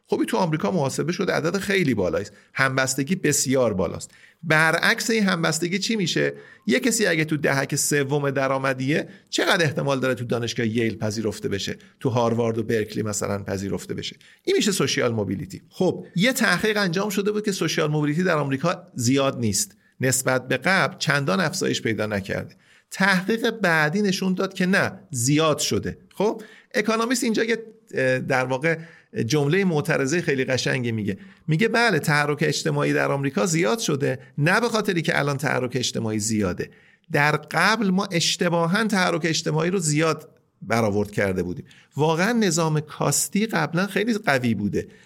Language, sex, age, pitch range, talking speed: Persian, male, 40-59, 130-185 Hz, 150 wpm